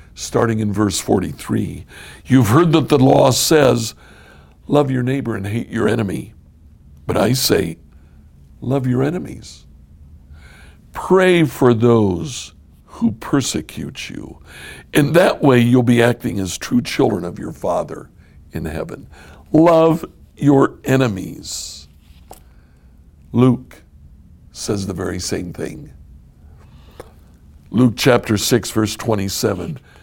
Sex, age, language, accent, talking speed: male, 60-79, English, American, 115 wpm